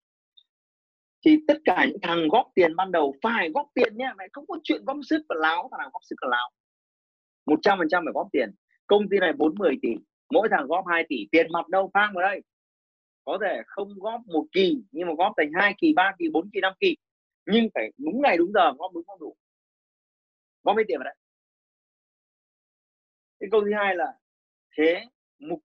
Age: 30-49